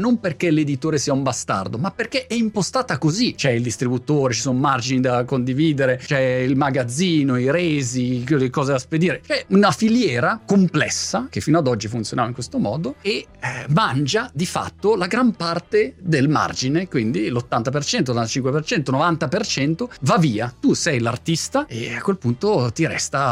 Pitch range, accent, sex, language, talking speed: 125-180 Hz, native, male, Italian, 165 wpm